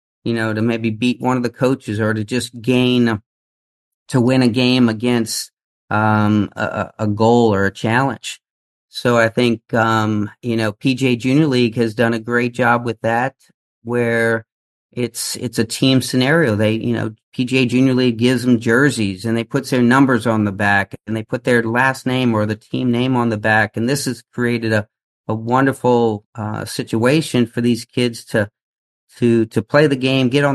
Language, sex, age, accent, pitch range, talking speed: English, male, 40-59, American, 110-125 Hz, 190 wpm